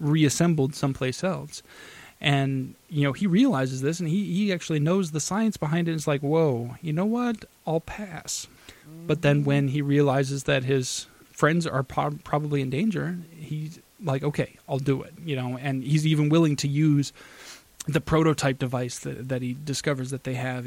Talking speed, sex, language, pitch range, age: 185 wpm, male, English, 130-155 Hz, 20-39